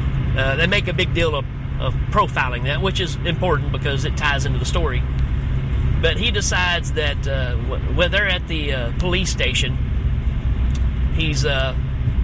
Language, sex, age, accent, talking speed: English, male, 40-59, American, 160 wpm